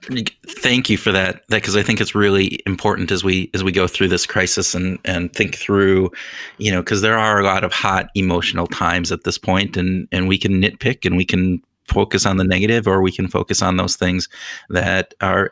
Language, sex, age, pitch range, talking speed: English, male, 30-49, 95-105 Hz, 225 wpm